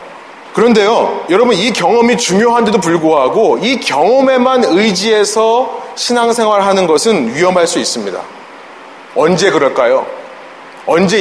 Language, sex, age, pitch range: Korean, male, 30-49, 205-285 Hz